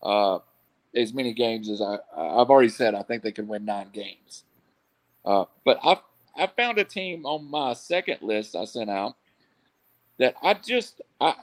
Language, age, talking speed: English, 50-69, 180 wpm